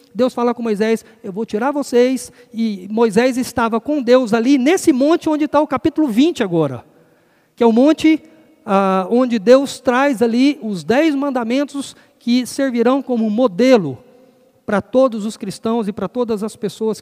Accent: Brazilian